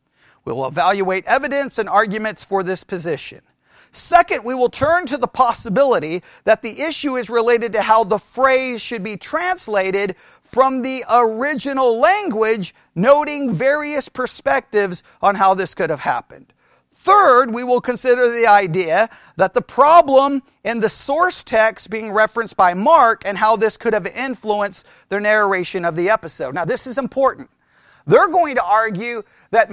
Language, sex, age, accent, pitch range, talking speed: English, male, 40-59, American, 205-275 Hz, 155 wpm